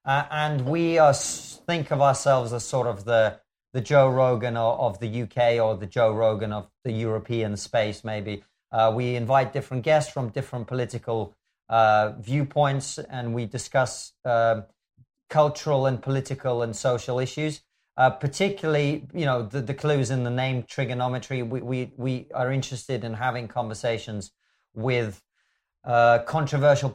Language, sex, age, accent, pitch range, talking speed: English, male, 40-59, British, 115-135 Hz, 155 wpm